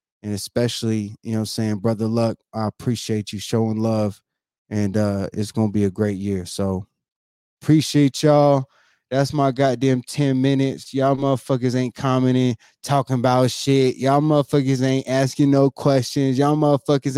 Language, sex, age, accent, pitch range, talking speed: English, male, 20-39, American, 125-175 Hz, 150 wpm